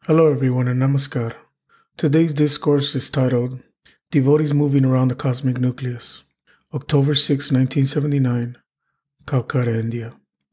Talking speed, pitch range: 105 wpm, 130-155 Hz